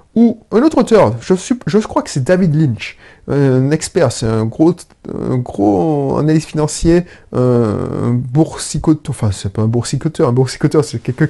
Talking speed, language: 165 wpm, French